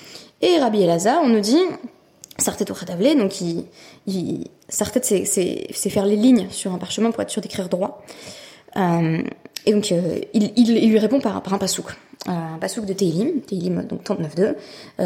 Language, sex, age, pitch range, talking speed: French, female, 20-39, 185-245 Hz, 185 wpm